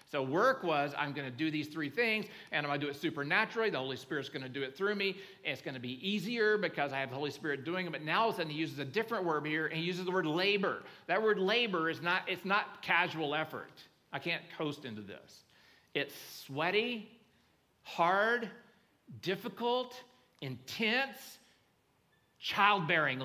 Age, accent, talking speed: 40-59, American, 200 wpm